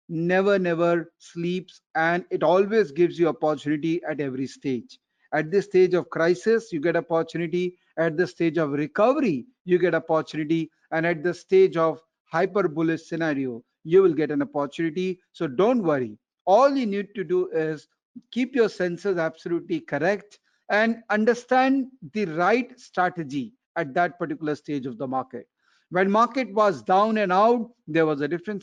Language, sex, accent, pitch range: Tamil, male, native, 165-210 Hz